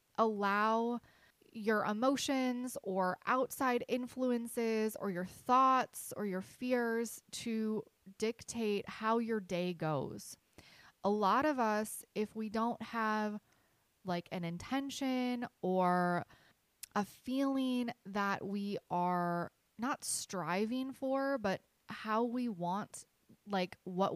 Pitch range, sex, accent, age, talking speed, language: 190-245 Hz, female, American, 20-39, 110 wpm, English